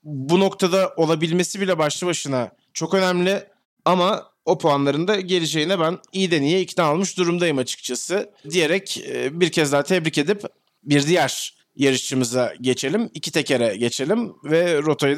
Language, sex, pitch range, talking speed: Turkish, male, 140-195 Hz, 140 wpm